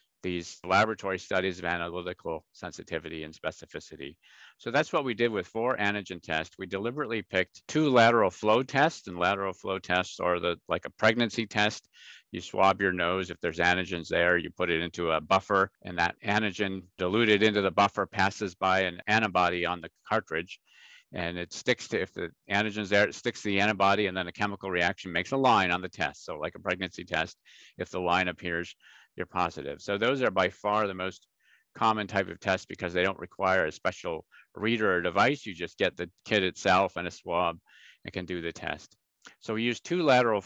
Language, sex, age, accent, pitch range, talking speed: English, male, 50-69, American, 90-105 Hz, 200 wpm